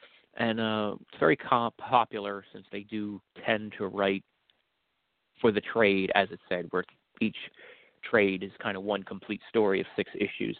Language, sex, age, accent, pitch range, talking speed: English, male, 30-49, American, 100-115 Hz, 165 wpm